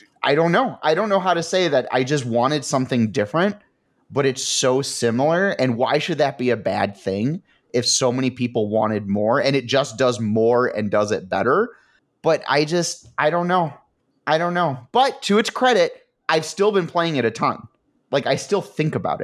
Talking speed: 210 wpm